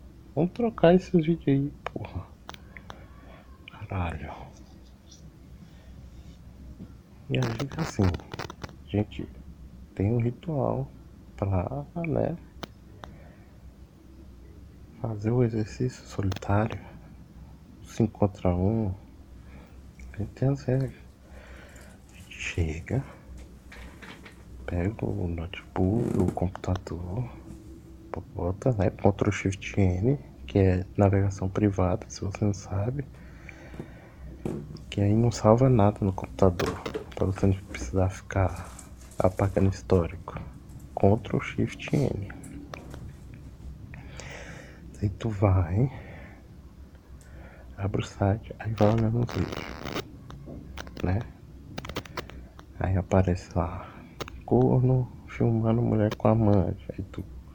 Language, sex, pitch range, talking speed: Portuguese, male, 80-110 Hz, 95 wpm